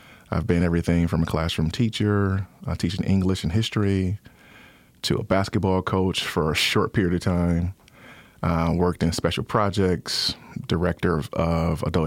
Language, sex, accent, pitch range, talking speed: English, male, American, 85-95 Hz, 155 wpm